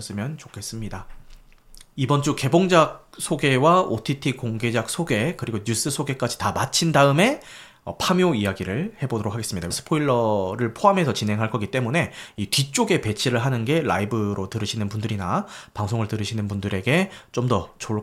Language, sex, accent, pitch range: Korean, male, native, 110-160 Hz